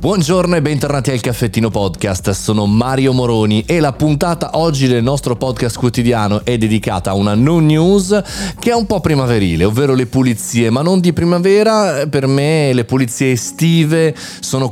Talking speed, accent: 165 wpm, native